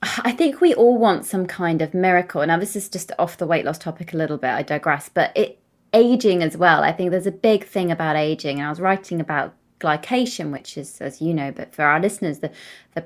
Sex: female